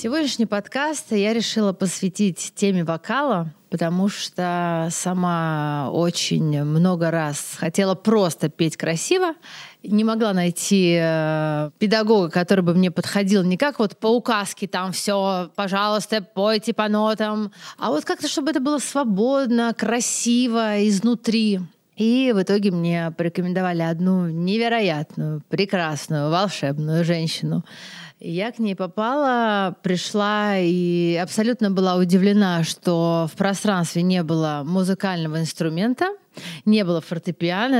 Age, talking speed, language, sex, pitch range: 20-39, 115 wpm, Russian, female, 170-215 Hz